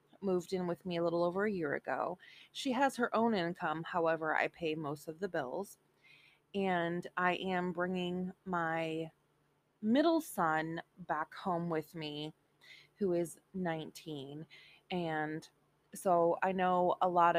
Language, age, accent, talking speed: English, 20-39, American, 145 wpm